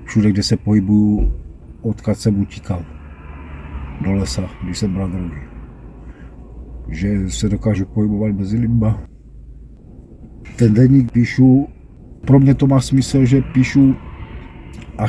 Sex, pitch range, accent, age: male, 90-110 Hz, native, 50-69